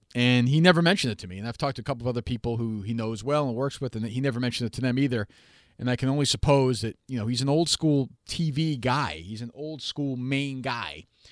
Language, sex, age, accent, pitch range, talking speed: English, male, 40-59, American, 110-135 Hz, 260 wpm